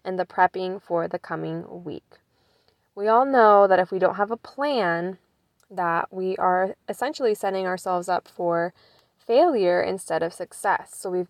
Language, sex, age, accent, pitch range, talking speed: English, female, 10-29, American, 185-235 Hz, 165 wpm